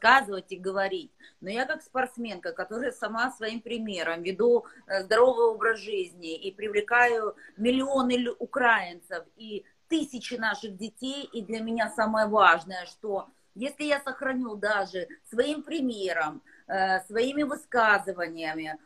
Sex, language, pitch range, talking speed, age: female, Ukrainian, 205-265 Hz, 120 wpm, 30-49